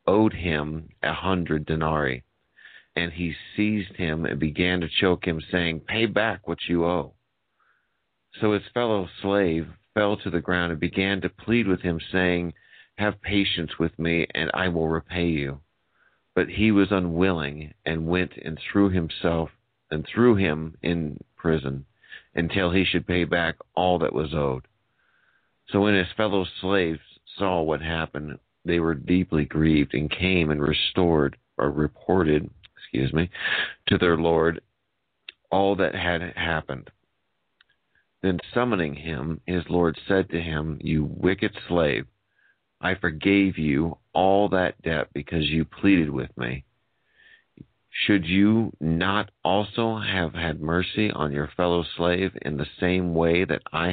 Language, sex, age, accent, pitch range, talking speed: English, male, 50-69, American, 80-95 Hz, 150 wpm